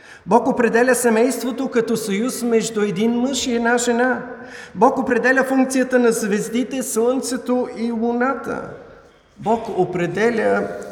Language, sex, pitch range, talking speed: Bulgarian, male, 170-245 Hz, 115 wpm